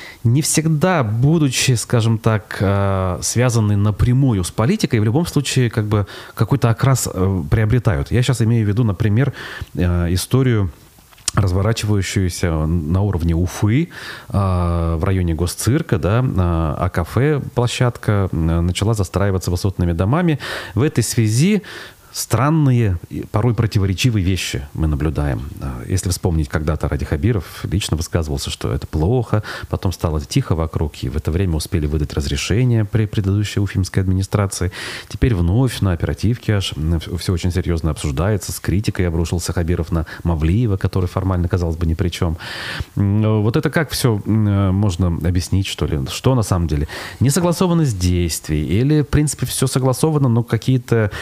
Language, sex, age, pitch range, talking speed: Russian, male, 30-49, 90-120 Hz, 135 wpm